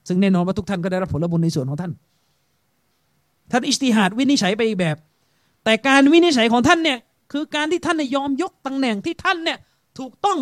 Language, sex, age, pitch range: Thai, male, 30-49, 195-280 Hz